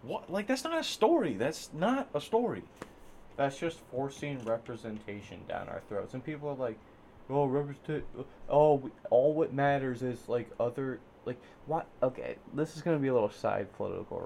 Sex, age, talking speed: male, 20-39, 180 wpm